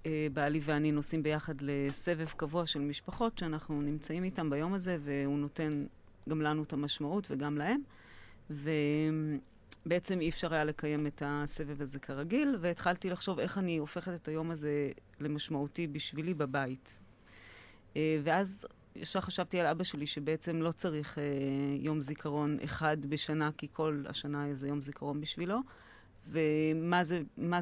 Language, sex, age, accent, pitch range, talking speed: Hebrew, female, 30-49, native, 145-180 Hz, 135 wpm